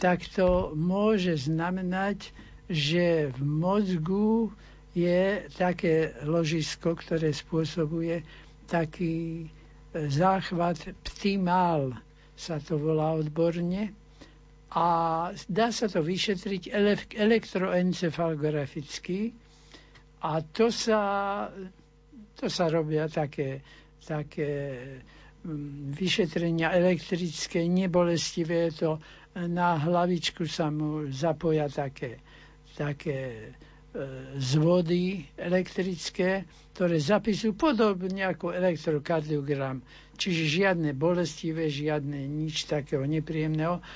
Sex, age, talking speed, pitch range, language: male, 60-79, 80 wpm, 150-180 Hz, Slovak